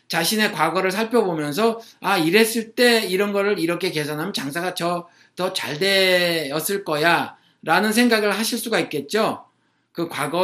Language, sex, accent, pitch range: Korean, male, native, 160-240 Hz